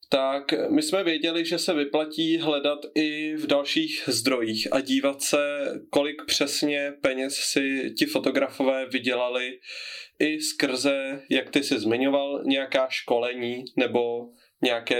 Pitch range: 130-165 Hz